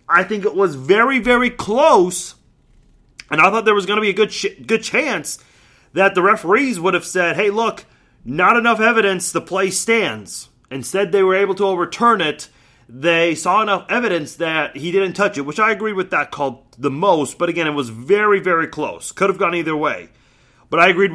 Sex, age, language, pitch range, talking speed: male, 30-49, English, 165-215 Hz, 205 wpm